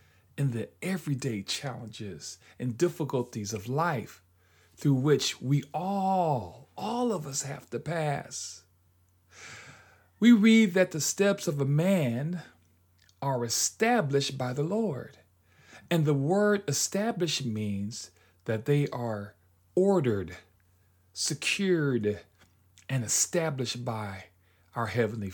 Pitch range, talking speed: 100-160 Hz, 110 wpm